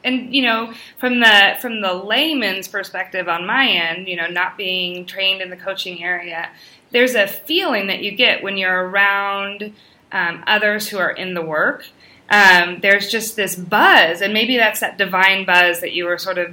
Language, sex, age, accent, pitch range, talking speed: English, female, 20-39, American, 180-215 Hz, 190 wpm